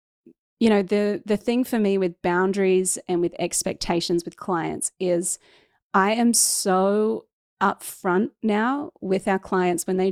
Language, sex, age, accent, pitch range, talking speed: English, female, 30-49, Australian, 185-220 Hz, 150 wpm